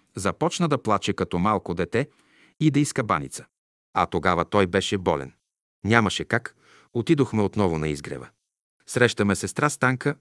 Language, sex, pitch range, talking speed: Bulgarian, male, 95-125 Hz, 140 wpm